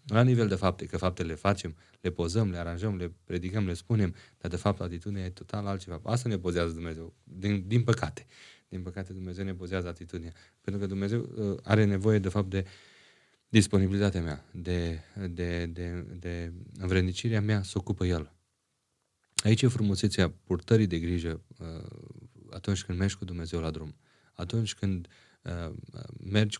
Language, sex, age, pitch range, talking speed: Romanian, male, 30-49, 90-120 Hz, 160 wpm